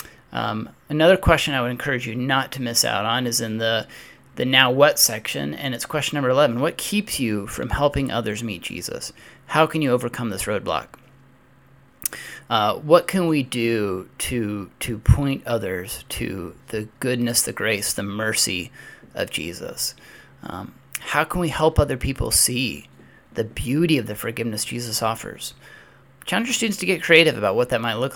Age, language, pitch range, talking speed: 30-49, English, 115-145 Hz, 175 wpm